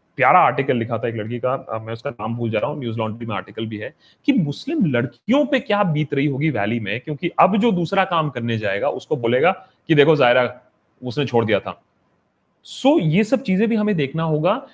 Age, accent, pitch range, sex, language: 30-49, native, 140-185 Hz, male, Hindi